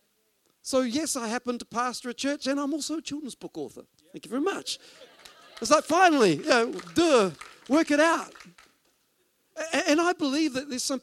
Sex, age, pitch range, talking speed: male, 50-69, 195-265 Hz, 170 wpm